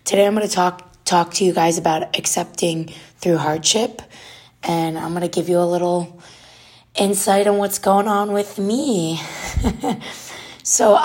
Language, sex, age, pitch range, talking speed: English, female, 20-39, 165-200 Hz, 155 wpm